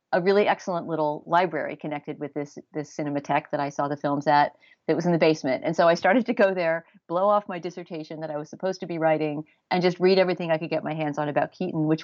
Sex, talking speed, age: female, 260 wpm, 40-59